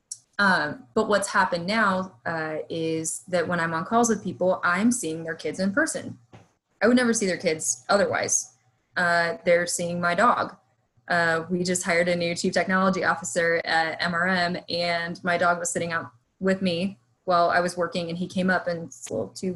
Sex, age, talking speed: female, 20-39, 185 wpm